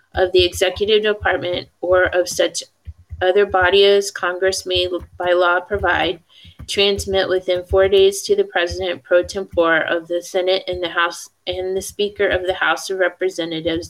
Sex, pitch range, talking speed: female, 175-195 Hz, 160 wpm